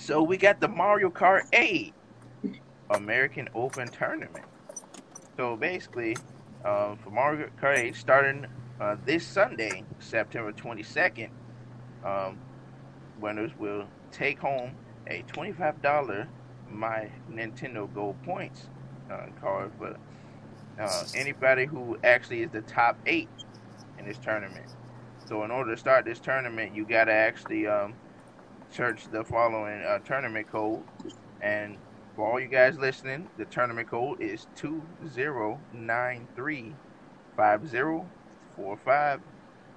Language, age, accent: English, 20-39, American